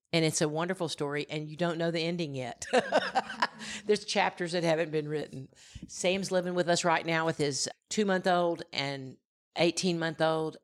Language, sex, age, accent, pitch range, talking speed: English, female, 50-69, American, 140-160 Hz, 165 wpm